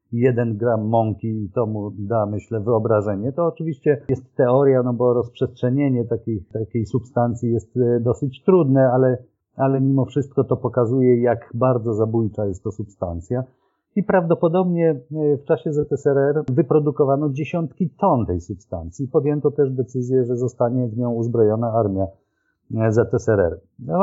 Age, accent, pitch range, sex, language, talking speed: 50-69, native, 110-130 Hz, male, Polish, 135 wpm